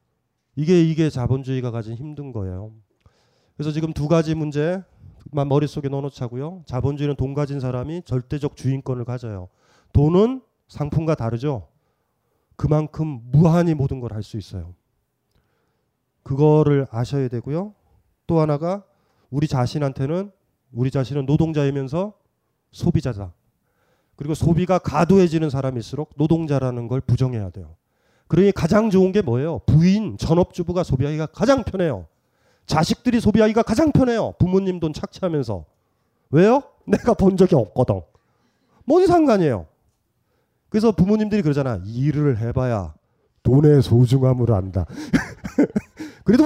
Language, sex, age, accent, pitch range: Korean, male, 30-49, native, 125-180 Hz